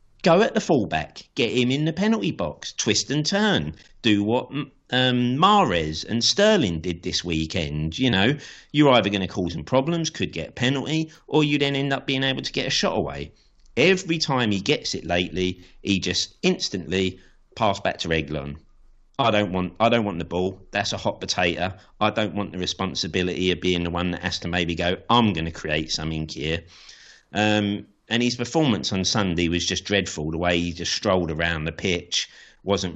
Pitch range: 85-125 Hz